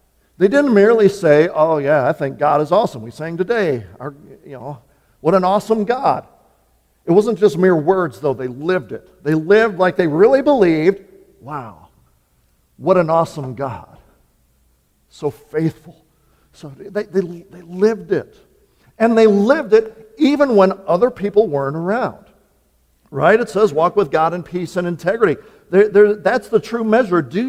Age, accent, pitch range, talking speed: 50-69, American, 150-220 Hz, 155 wpm